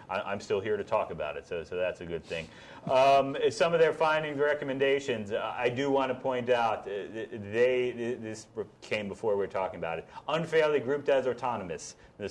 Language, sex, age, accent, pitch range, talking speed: English, male, 30-49, American, 105-145 Hz, 195 wpm